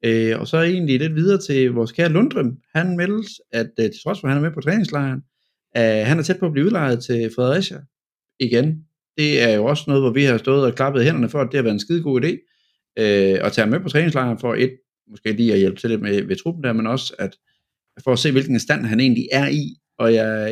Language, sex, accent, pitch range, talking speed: Danish, male, native, 110-140 Hz, 255 wpm